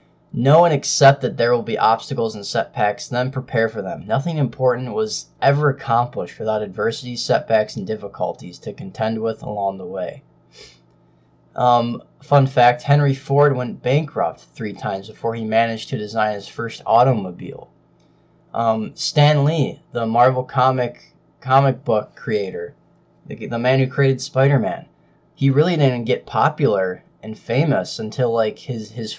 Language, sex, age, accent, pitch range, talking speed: English, male, 20-39, American, 115-140 Hz, 150 wpm